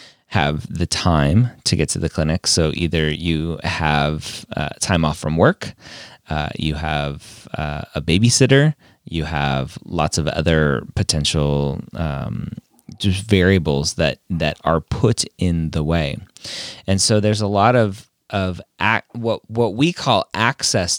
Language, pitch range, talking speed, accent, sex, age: English, 80-105 Hz, 150 wpm, American, male, 30-49